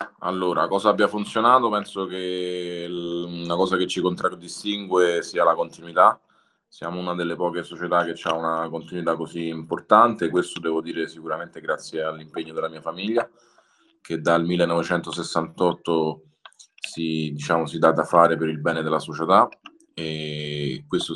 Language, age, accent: Italian, 20-39, native